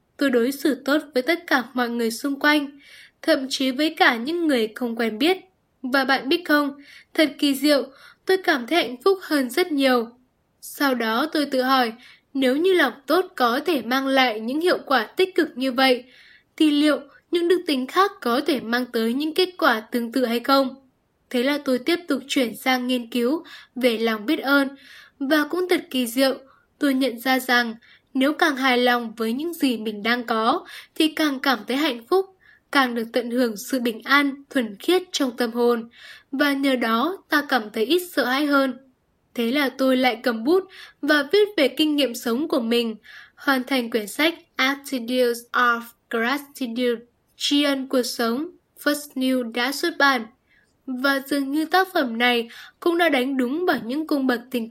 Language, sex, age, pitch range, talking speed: Vietnamese, female, 10-29, 245-300 Hz, 195 wpm